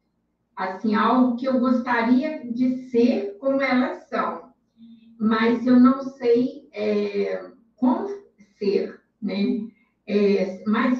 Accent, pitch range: Brazilian, 215-250 Hz